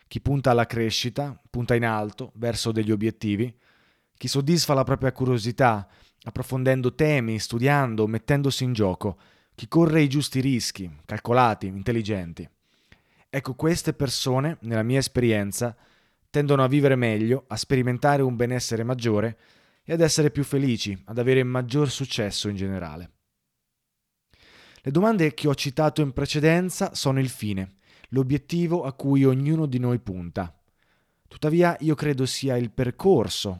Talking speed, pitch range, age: 140 wpm, 110-145 Hz, 20-39